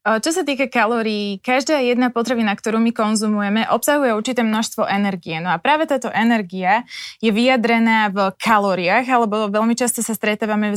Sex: female